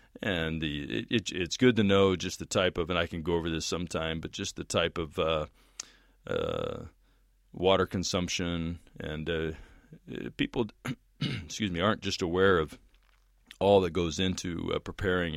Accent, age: American, 40-59